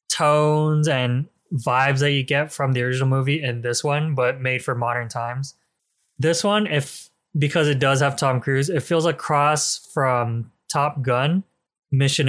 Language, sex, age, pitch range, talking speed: English, male, 20-39, 125-155 Hz, 170 wpm